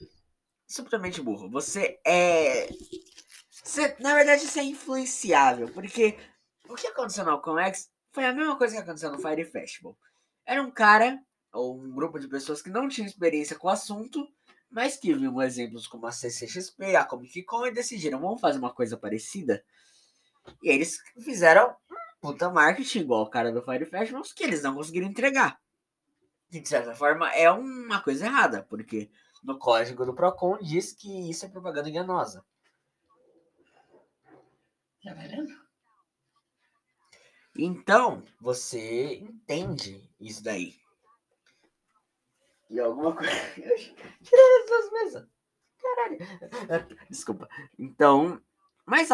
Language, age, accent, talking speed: Portuguese, 10-29, Brazilian, 135 wpm